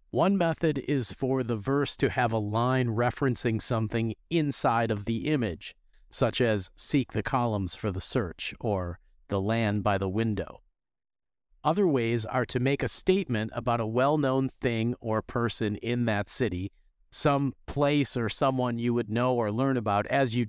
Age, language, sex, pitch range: 40-59, English, male, 105-130 Hz